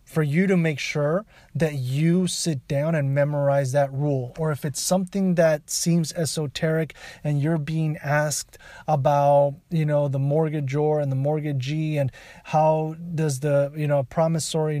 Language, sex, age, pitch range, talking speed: English, male, 30-49, 140-165 Hz, 160 wpm